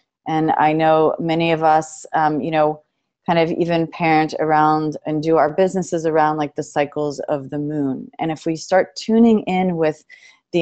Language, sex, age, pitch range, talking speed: English, female, 30-49, 145-165 Hz, 185 wpm